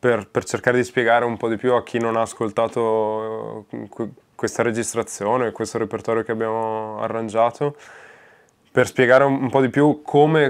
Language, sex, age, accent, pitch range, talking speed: Italian, male, 20-39, native, 110-130 Hz, 160 wpm